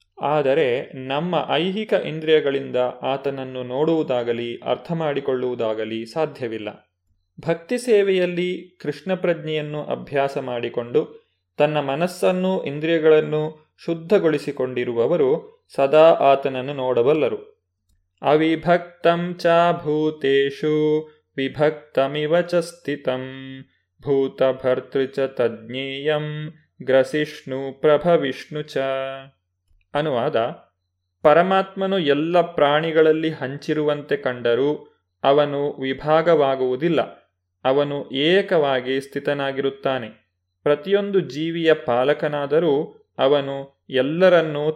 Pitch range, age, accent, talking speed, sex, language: 130-165 Hz, 20-39, native, 60 wpm, male, Kannada